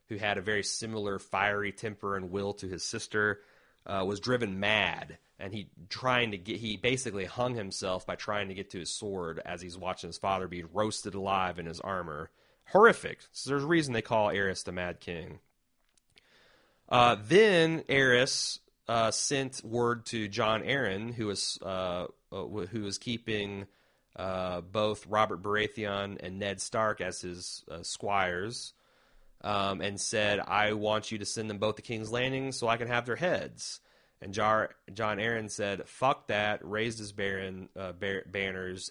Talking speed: 175 wpm